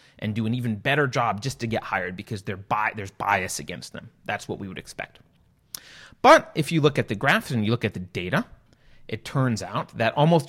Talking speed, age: 225 wpm, 30-49